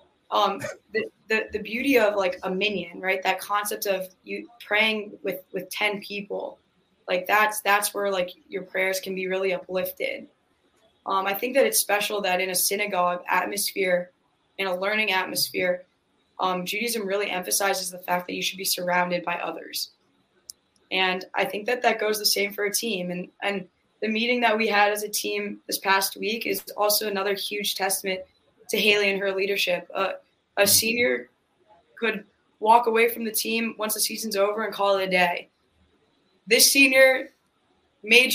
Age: 20-39